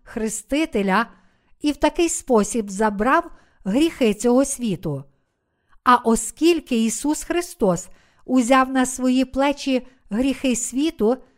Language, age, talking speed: Ukrainian, 50-69, 100 wpm